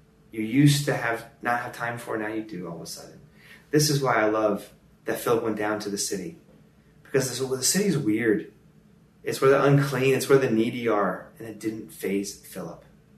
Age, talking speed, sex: 30-49, 220 wpm, male